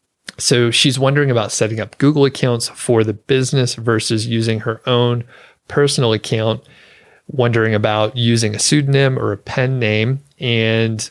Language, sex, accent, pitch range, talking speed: English, male, American, 110-130 Hz, 145 wpm